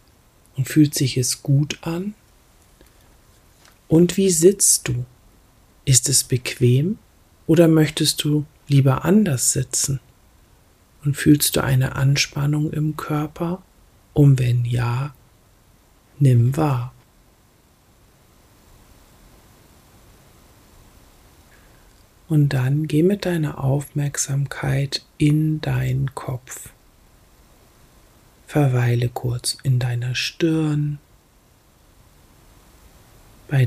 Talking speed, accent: 80 wpm, German